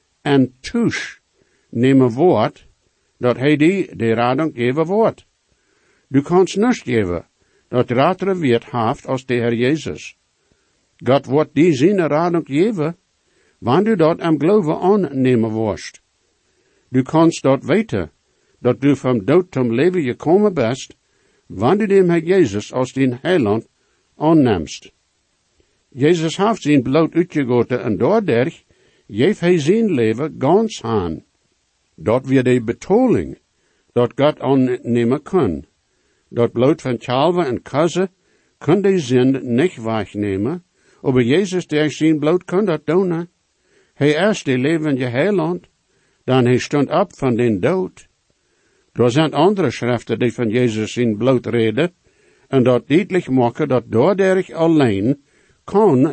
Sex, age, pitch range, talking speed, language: male, 60-79, 120-170 Hz, 140 wpm, English